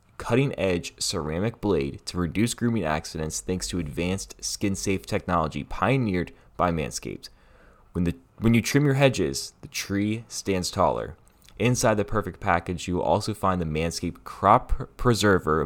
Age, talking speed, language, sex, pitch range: 20-39, 155 wpm, English, male, 85-110 Hz